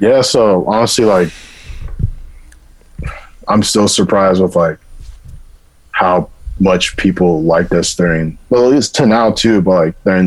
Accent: American